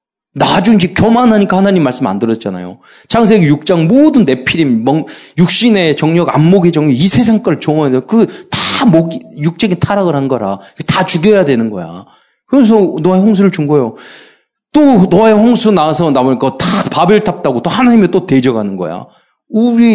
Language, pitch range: Korean, 135-220 Hz